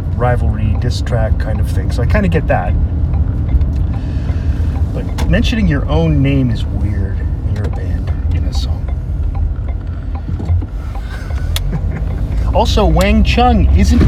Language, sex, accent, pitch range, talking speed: English, male, American, 75-90 Hz, 125 wpm